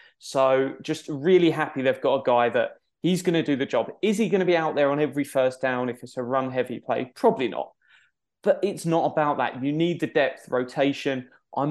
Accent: British